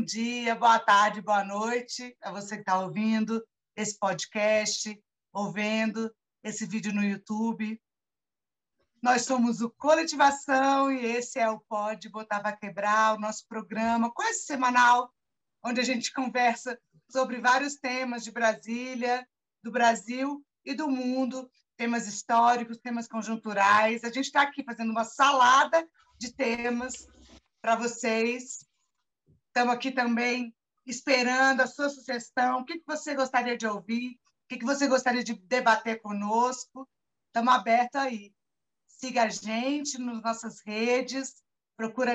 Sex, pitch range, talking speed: female, 225-255 Hz, 135 wpm